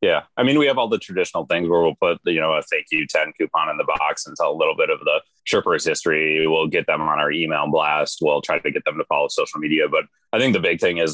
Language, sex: English, male